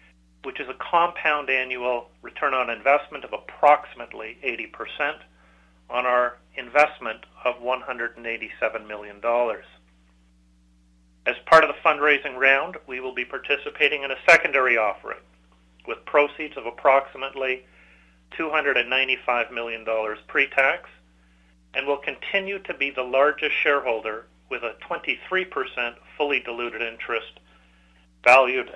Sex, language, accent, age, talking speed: male, English, American, 40-59, 110 wpm